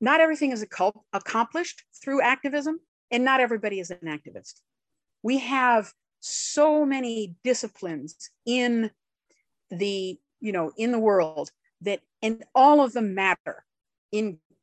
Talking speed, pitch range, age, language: 125 wpm, 185-245 Hz, 50-69, English